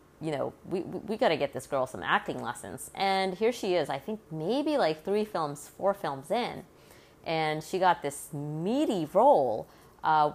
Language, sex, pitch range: English, female, 145-185 Hz